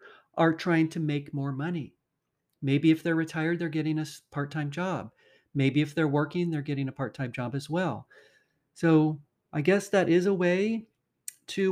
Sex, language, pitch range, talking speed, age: male, English, 145-170 Hz, 175 wpm, 40-59